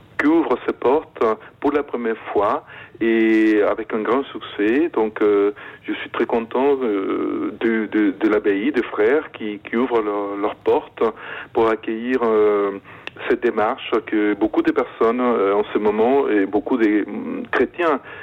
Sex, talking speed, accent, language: male, 160 wpm, French, French